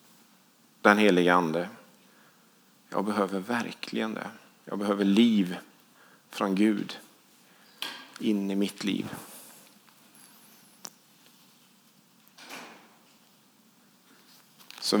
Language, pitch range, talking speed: English, 95-115 Hz, 70 wpm